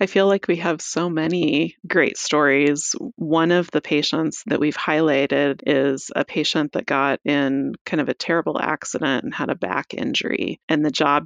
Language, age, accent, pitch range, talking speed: English, 30-49, American, 145-175 Hz, 185 wpm